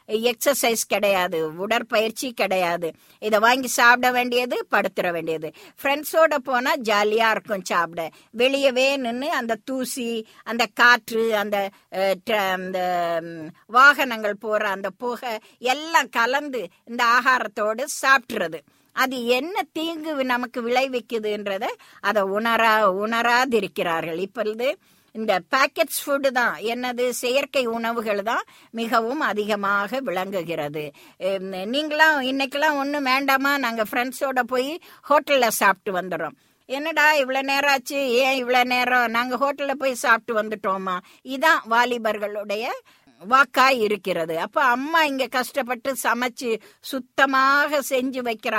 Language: Tamil